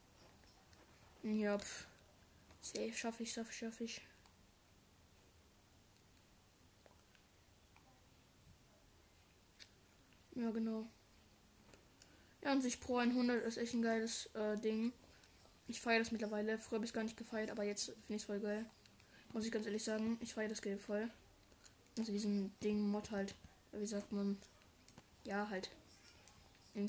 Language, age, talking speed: German, 10-29, 125 wpm